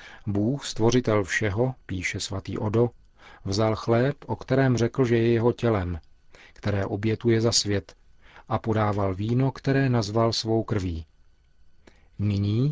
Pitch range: 95-115 Hz